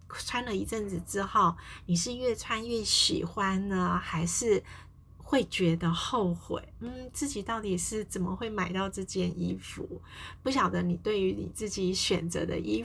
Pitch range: 175-225 Hz